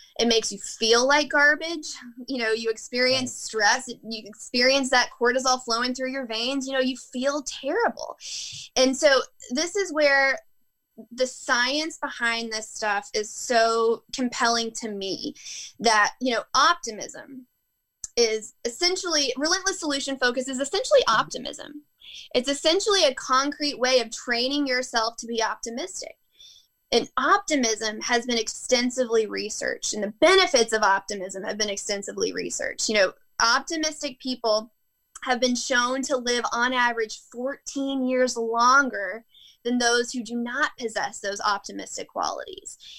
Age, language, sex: 20-39, English, female